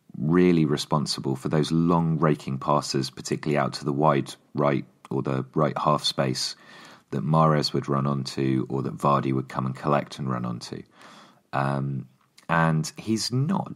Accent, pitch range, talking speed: British, 65-80 Hz, 160 wpm